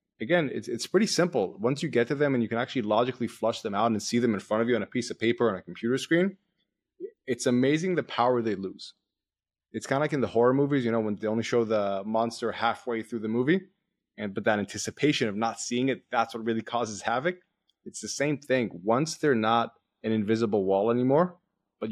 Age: 20-39